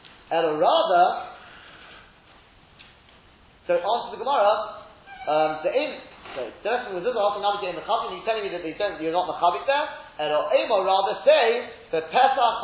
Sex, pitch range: male, 175-285 Hz